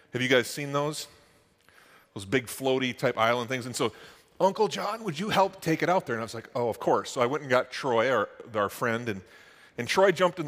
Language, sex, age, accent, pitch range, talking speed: English, male, 40-59, American, 115-150 Hz, 245 wpm